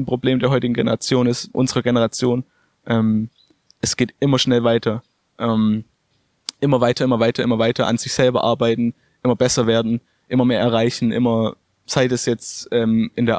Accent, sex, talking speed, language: German, male, 165 wpm, German